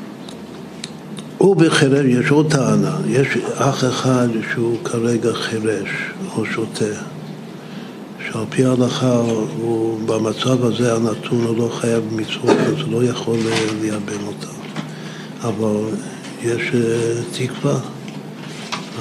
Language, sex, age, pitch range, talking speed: Hebrew, male, 60-79, 115-135 Hz, 105 wpm